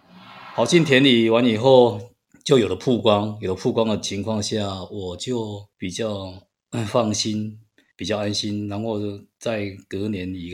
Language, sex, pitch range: Chinese, male, 105-130 Hz